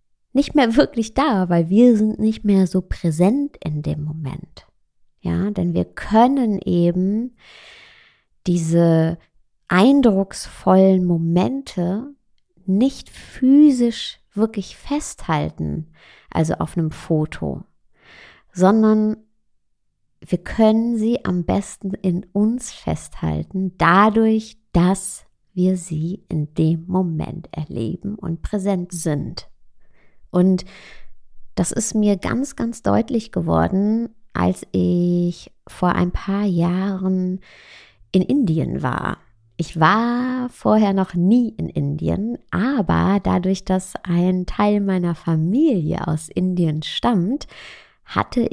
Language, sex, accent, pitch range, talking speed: German, female, German, 165-220 Hz, 105 wpm